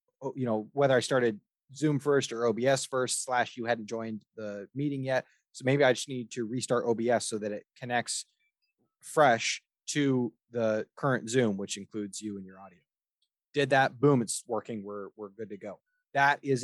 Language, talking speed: English, 190 wpm